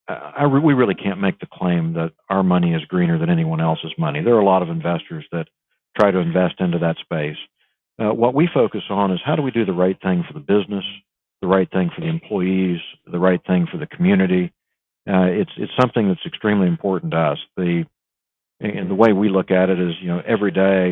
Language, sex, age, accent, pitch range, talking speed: English, male, 50-69, American, 90-115 Hz, 225 wpm